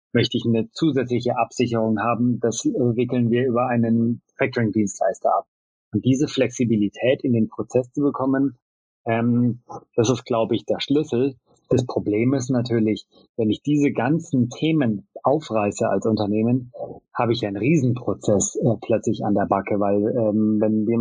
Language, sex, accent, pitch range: English, male, German, 110-130 Hz